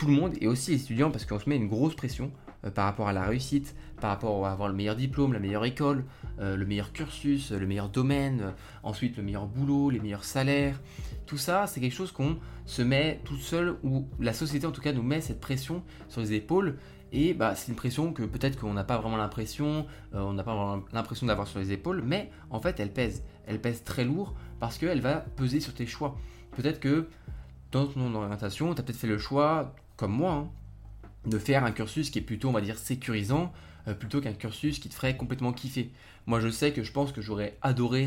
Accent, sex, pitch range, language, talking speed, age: French, male, 105-135 Hz, French, 230 wpm, 20-39